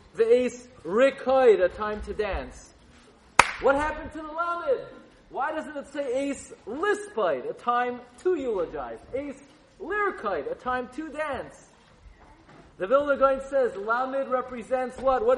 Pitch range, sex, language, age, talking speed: 235-280 Hz, male, English, 40-59, 135 wpm